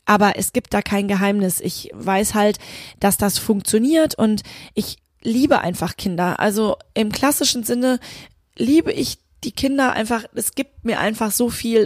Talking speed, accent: 160 wpm, German